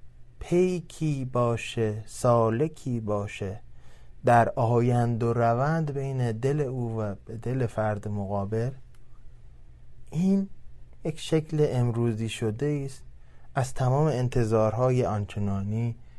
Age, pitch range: 20-39, 105-130 Hz